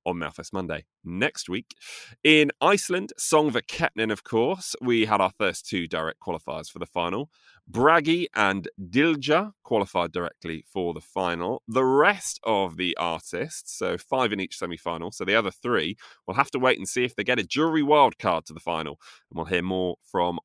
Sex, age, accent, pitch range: male, 30-49, British, 95-145 Hz